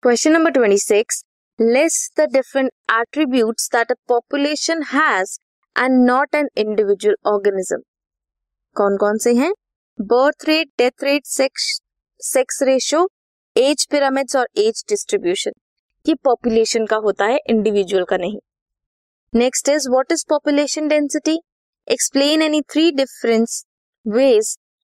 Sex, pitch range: female, 220-300 Hz